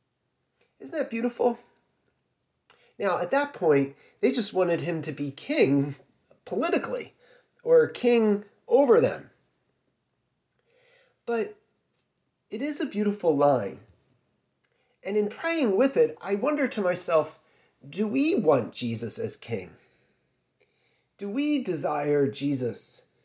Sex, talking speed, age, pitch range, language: male, 115 wpm, 30-49, 170-255 Hz, English